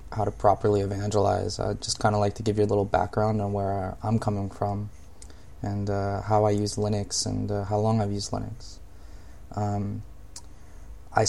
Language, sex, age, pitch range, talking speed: English, male, 20-39, 105-115 Hz, 185 wpm